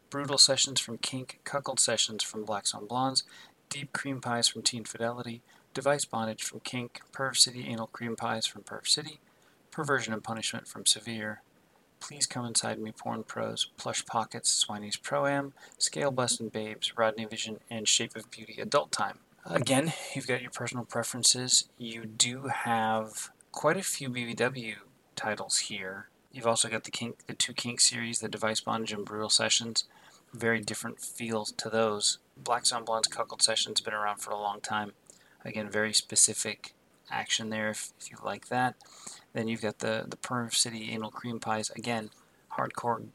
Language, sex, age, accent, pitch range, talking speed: English, male, 40-59, American, 110-125 Hz, 170 wpm